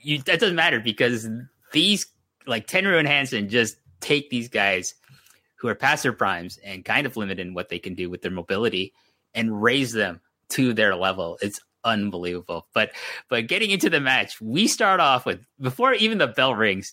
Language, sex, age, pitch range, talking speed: English, male, 30-49, 115-165 Hz, 190 wpm